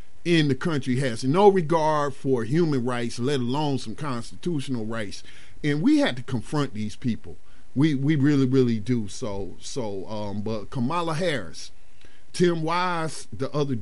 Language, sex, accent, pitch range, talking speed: English, male, American, 110-145 Hz, 155 wpm